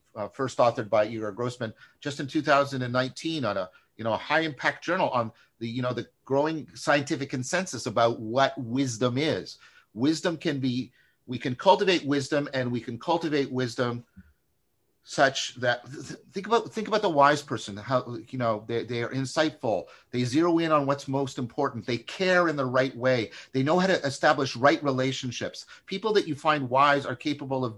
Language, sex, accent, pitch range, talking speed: English, male, American, 120-155 Hz, 180 wpm